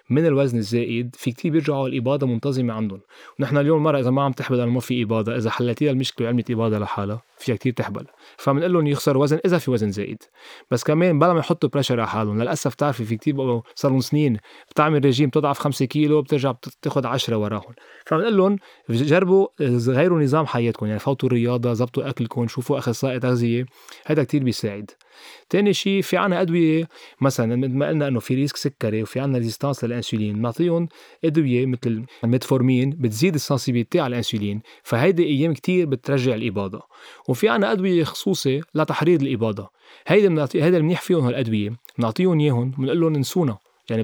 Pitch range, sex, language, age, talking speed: 120-160 Hz, male, Arabic, 20-39, 165 wpm